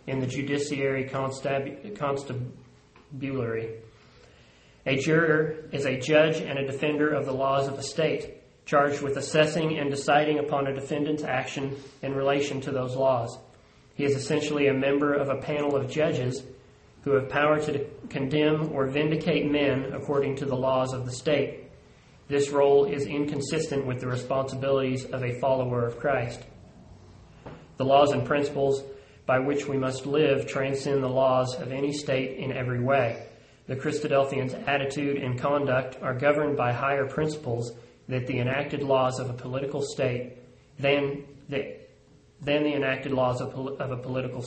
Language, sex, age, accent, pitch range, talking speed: English, male, 40-59, American, 130-145 Hz, 155 wpm